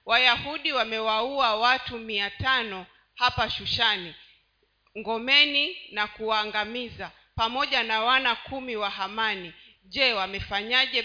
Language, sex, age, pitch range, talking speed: Swahili, female, 40-59, 210-255 Hz, 90 wpm